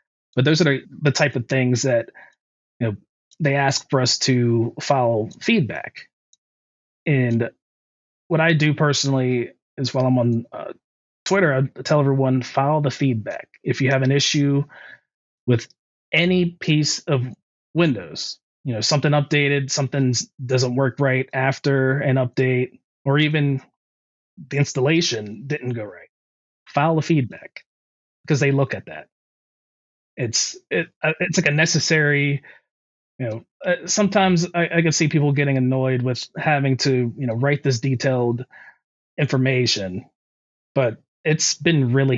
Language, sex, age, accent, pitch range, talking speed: English, male, 30-49, American, 125-150 Hz, 140 wpm